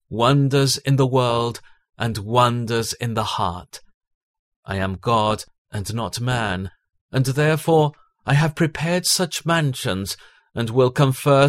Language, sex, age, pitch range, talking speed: English, male, 40-59, 110-140 Hz, 130 wpm